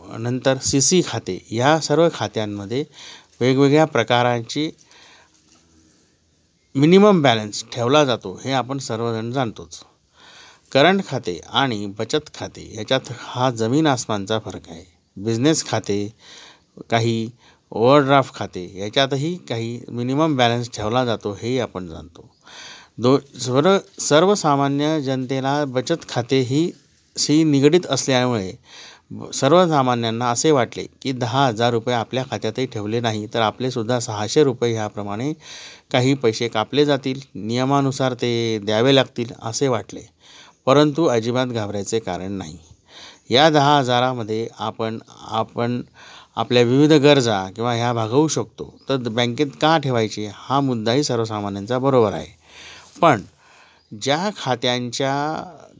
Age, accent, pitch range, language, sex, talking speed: 50-69, native, 110-140 Hz, Marathi, male, 105 wpm